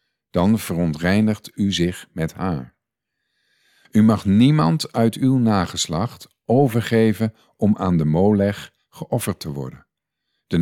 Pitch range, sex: 85-115 Hz, male